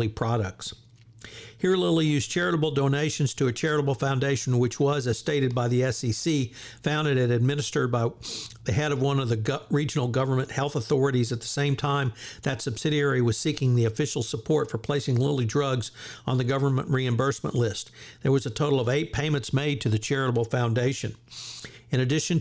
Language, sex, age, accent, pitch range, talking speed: English, male, 60-79, American, 120-150 Hz, 175 wpm